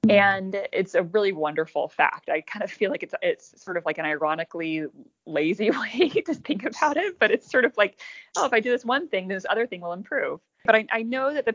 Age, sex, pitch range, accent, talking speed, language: 20-39, female, 170-220 Hz, American, 250 wpm, English